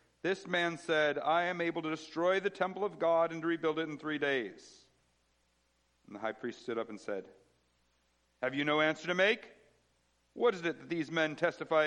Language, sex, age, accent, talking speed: English, male, 50-69, American, 200 wpm